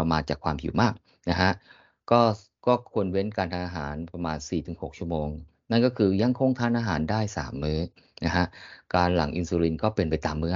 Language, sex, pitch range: Thai, male, 80-105 Hz